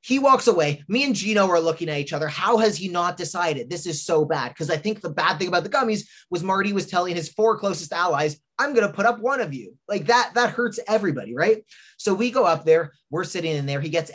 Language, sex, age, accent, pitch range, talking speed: English, male, 20-39, American, 145-190 Hz, 265 wpm